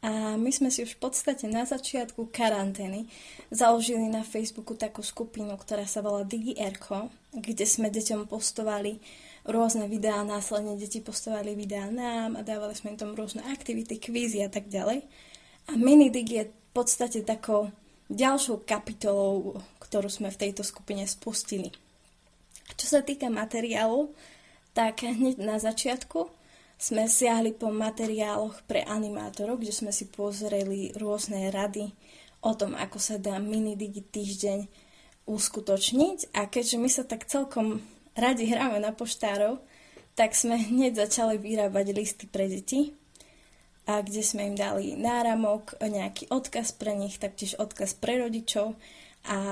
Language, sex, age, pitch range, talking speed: Slovak, female, 20-39, 205-230 Hz, 145 wpm